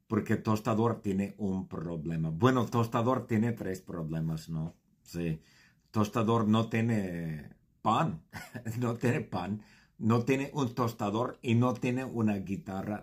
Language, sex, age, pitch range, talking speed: English, male, 50-69, 95-125 Hz, 130 wpm